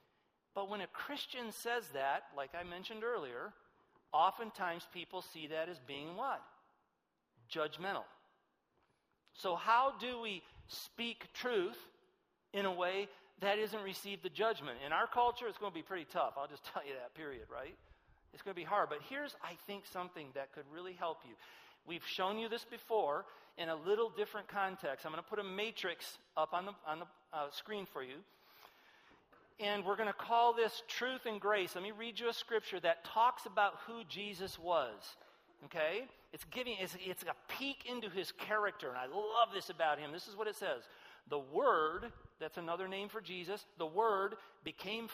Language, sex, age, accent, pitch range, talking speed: English, male, 40-59, American, 175-225 Hz, 185 wpm